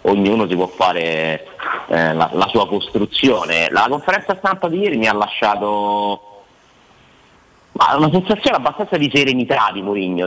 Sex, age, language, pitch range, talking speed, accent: male, 30-49, Italian, 95-135 Hz, 140 wpm, native